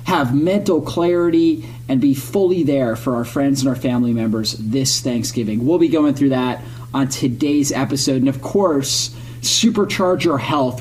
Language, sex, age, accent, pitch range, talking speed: English, male, 30-49, American, 125-165 Hz, 165 wpm